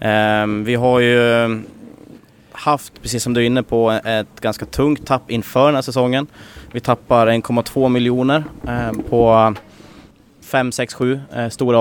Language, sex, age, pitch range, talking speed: Swedish, male, 20-39, 105-120 Hz, 135 wpm